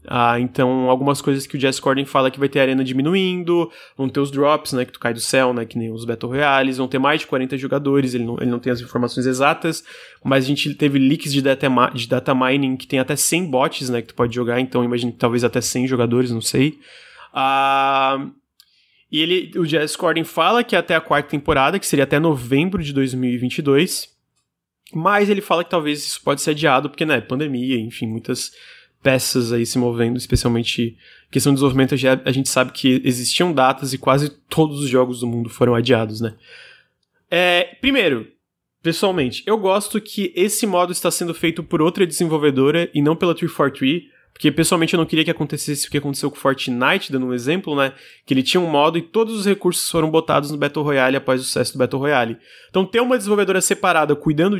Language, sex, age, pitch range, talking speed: Portuguese, male, 20-39, 130-160 Hz, 210 wpm